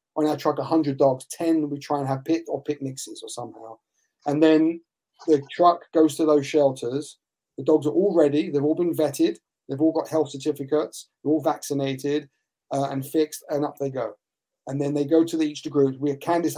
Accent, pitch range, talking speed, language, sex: British, 135-160 Hz, 205 wpm, English, male